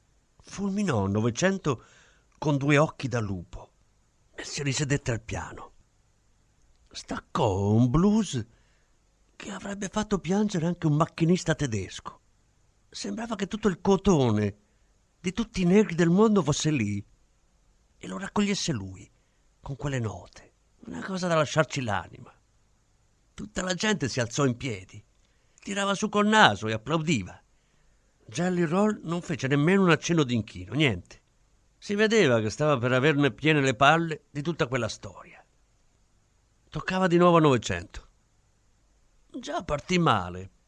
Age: 50-69